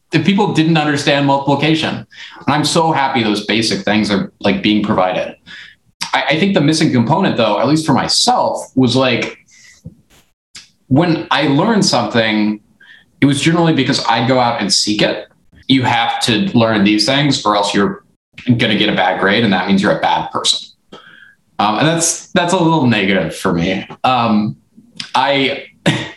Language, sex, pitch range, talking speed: English, male, 105-150 Hz, 175 wpm